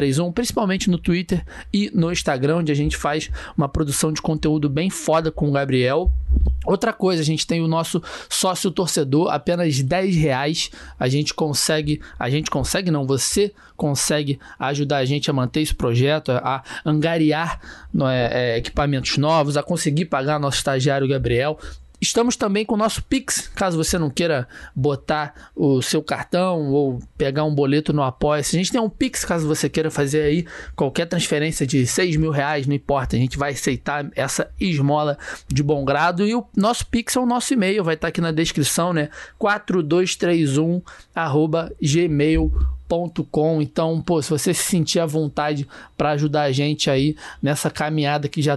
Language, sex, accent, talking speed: Portuguese, male, Brazilian, 175 wpm